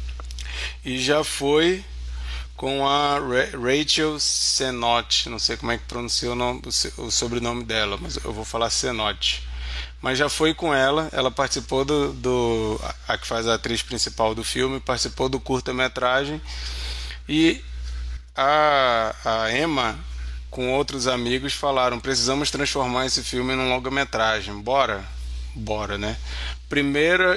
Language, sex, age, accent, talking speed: Portuguese, male, 20-39, Brazilian, 135 wpm